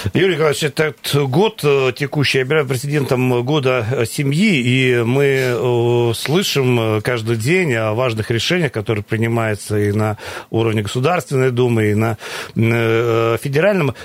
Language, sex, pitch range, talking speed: Russian, male, 115-145 Hz, 120 wpm